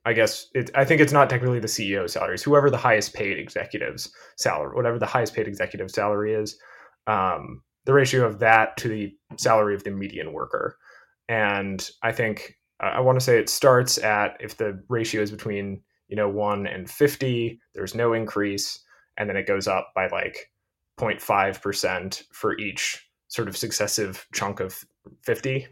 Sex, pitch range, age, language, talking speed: male, 105-140 Hz, 20-39, English, 175 wpm